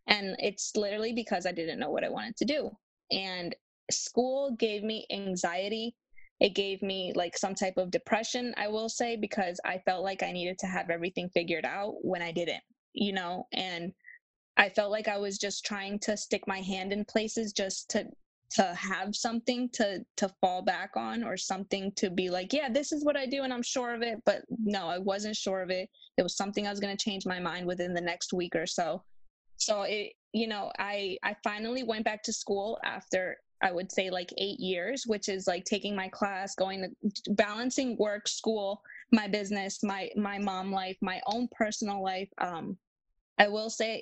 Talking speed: 205 wpm